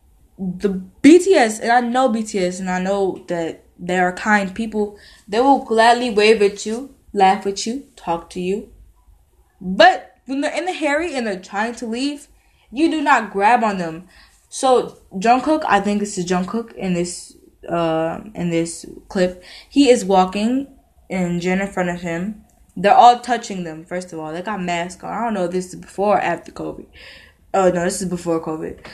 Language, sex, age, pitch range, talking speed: English, female, 10-29, 175-230 Hz, 195 wpm